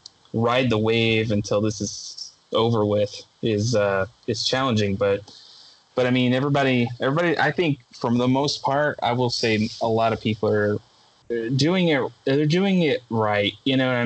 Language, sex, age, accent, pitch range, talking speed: English, male, 20-39, American, 105-120 Hz, 175 wpm